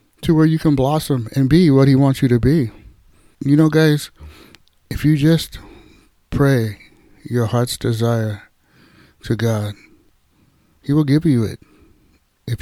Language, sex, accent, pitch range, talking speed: English, male, American, 115-145 Hz, 145 wpm